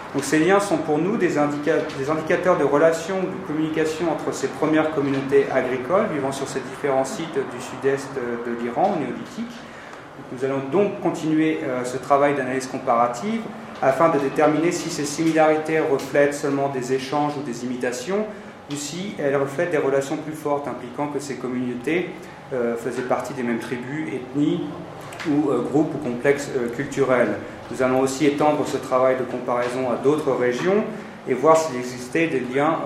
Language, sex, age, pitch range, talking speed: Persian, male, 30-49, 130-155 Hz, 165 wpm